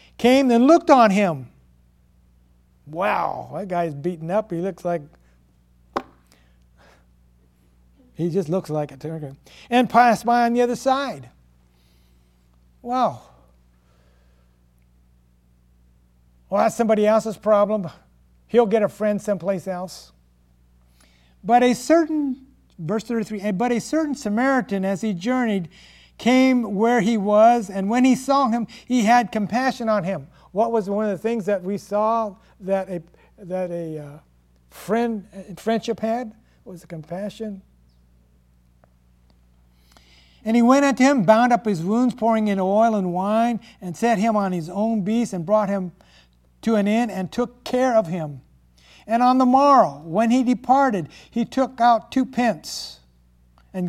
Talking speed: 145 wpm